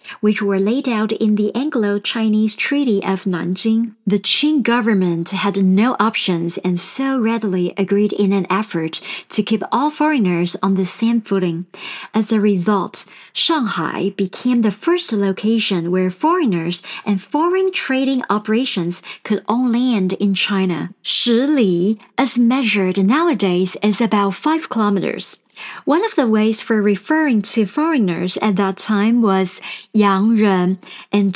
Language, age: English, 50-69